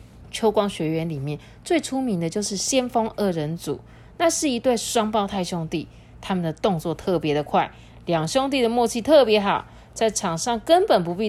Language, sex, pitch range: Chinese, female, 170-275 Hz